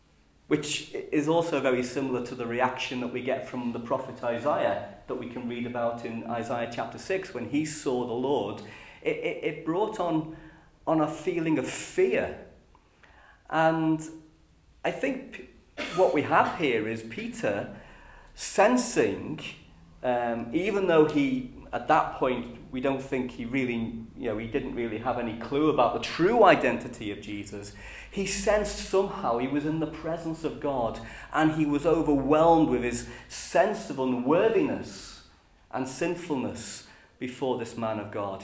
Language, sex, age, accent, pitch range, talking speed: English, male, 40-59, British, 115-155 Hz, 160 wpm